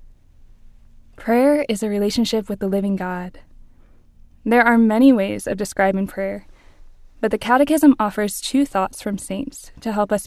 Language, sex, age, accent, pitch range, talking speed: English, female, 10-29, American, 190-240 Hz, 150 wpm